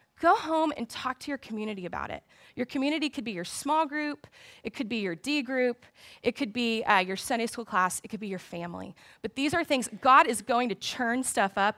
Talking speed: 235 wpm